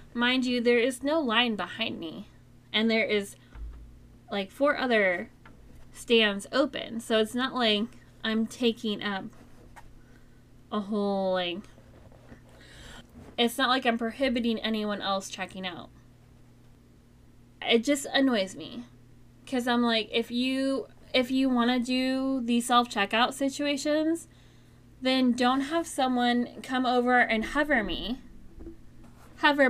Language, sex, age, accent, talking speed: English, female, 10-29, American, 125 wpm